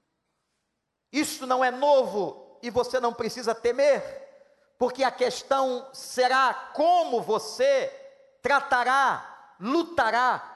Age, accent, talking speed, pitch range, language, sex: 50-69, Brazilian, 95 wpm, 200-280 Hz, Portuguese, male